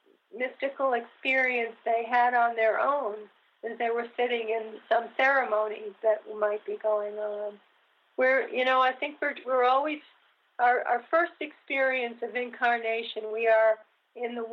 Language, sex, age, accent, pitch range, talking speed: English, female, 40-59, American, 220-255 Hz, 155 wpm